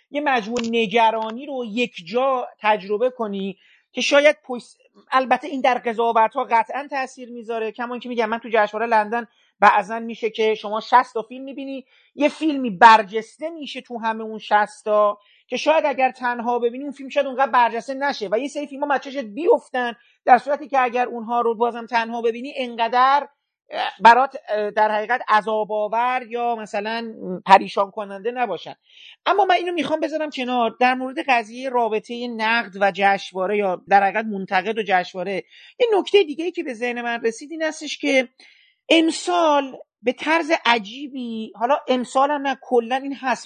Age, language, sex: 40-59, Persian, male